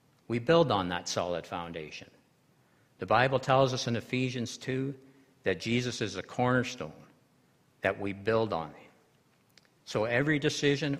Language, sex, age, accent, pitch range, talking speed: English, male, 60-79, American, 100-130 Hz, 140 wpm